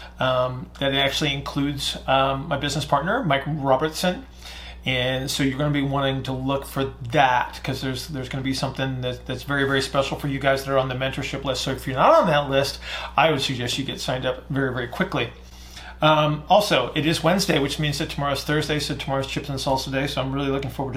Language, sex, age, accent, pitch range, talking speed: English, male, 30-49, American, 135-155 Hz, 225 wpm